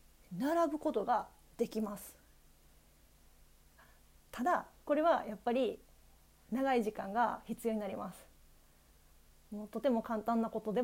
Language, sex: Japanese, female